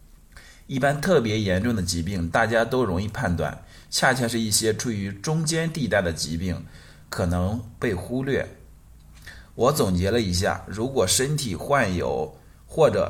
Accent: native